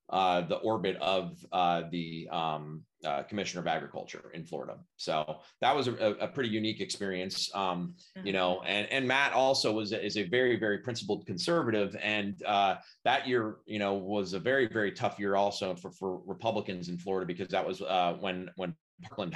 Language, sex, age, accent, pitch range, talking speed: English, male, 30-49, American, 90-105 Hz, 185 wpm